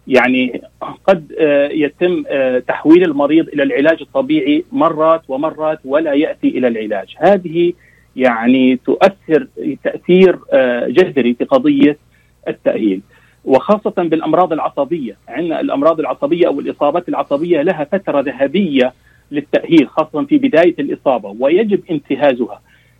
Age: 40-59